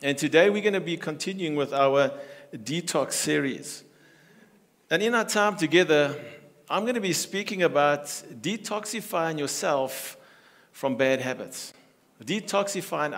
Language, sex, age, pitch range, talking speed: English, male, 50-69, 150-195 Hz, 130 wpm